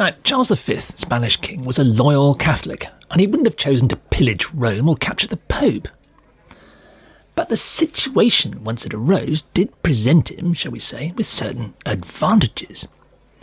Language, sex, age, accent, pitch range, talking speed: English, male, 40-59, British, 120-165 Hz, 155 wpm